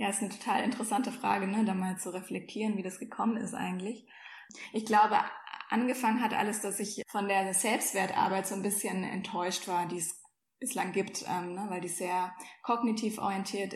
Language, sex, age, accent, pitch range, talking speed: German, female, 20-39, German, 190-220 Hz, 190 wpm